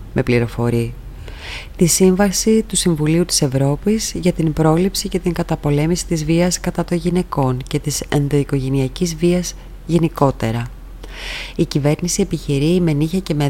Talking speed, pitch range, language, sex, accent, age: 140 wpm, 135-170 Hz, Greek, female, native, 20-39